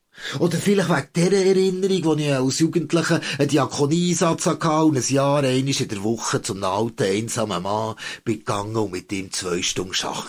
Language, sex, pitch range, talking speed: German, male, 135-170 Hz, 175 wpm